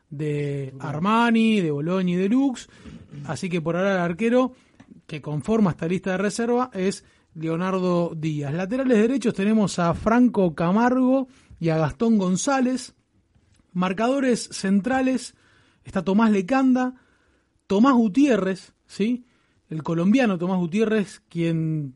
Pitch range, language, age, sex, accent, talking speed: 165-230 Hz, Spanish, 30-49, male, Argentinian, 120 wpm